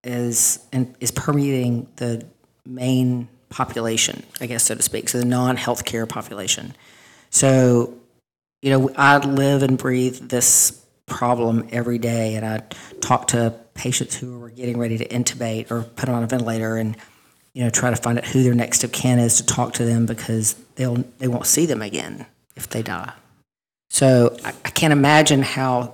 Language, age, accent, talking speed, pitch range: English, 40-59, American, 175 wpm, 120-130 Hz